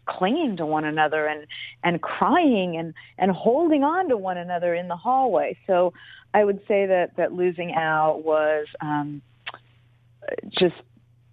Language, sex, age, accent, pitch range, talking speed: English, female, 40-59, American, 155-175 Hz, 150 wpm